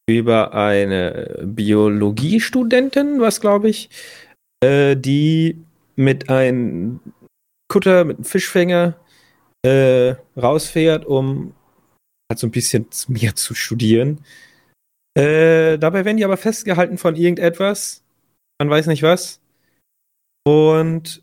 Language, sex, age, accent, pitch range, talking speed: German, male, 30-49, German, 125-160 Hz, 105 wpm